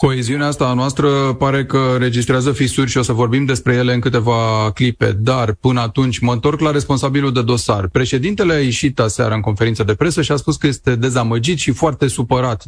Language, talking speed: Romanian, 205 wpm